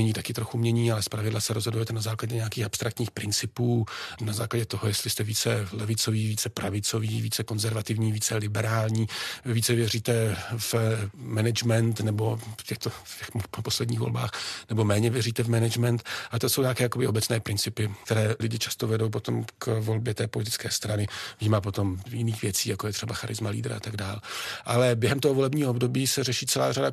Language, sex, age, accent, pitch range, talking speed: Czech, male, 40-59, native, 110-120 Hz, 175 wpm